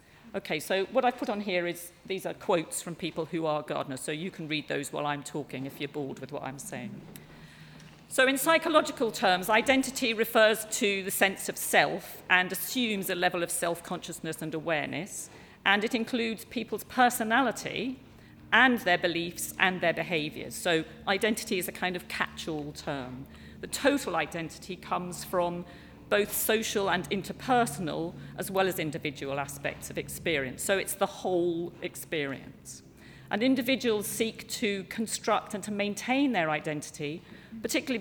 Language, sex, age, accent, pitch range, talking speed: English, female, 50-69, British, 160-220 Hz, 160 wpm